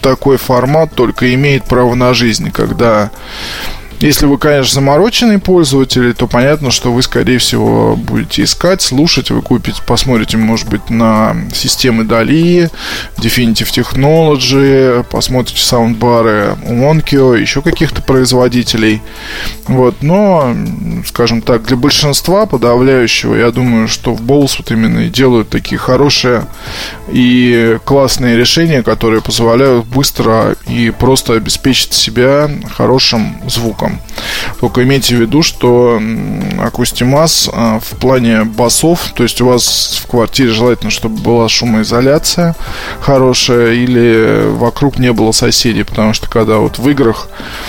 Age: 20-39